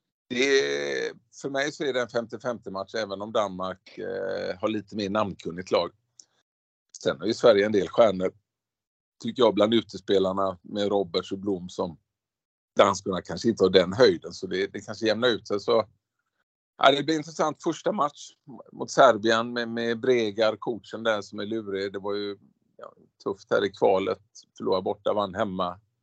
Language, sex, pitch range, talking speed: Swedish, male, 95-120 Hz, 180 wpm